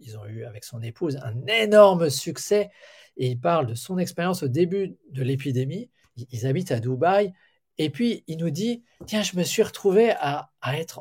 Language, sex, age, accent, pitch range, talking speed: French, male, 40-59, French, 130-195 Hz, 195 wpm